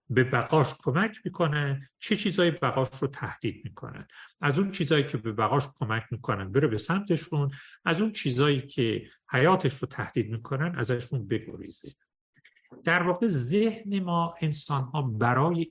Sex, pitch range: male, 115-165 Hz